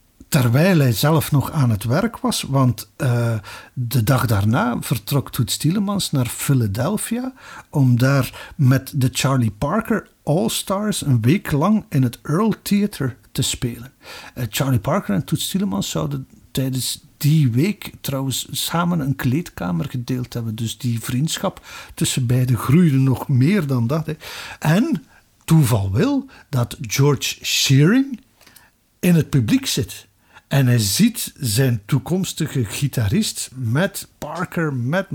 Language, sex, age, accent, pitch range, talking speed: Dutch, male, 50-69, Dutch, 125-165 Hz, 135 wpm